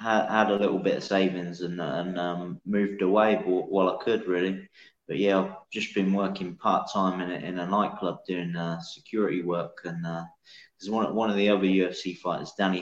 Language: English